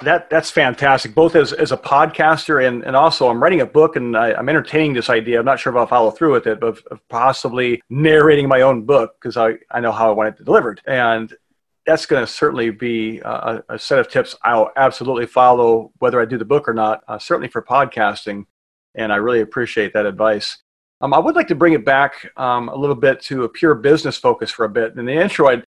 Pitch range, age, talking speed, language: 120-160 Hz, 40-59, 235 wpm, English